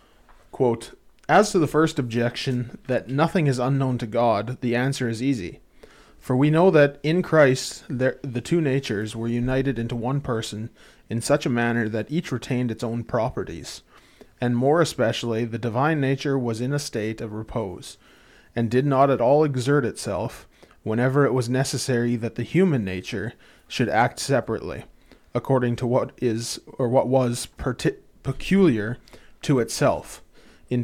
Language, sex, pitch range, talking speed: English, male, 115-135 Hz, 160 wpm